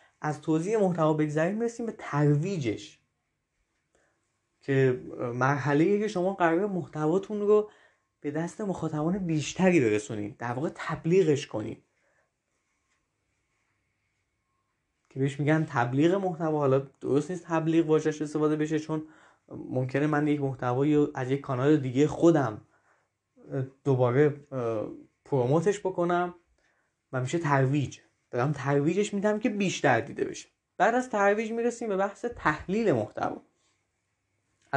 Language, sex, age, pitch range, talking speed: Persian, male, 20-39, 130-175 Hz, 115 wpm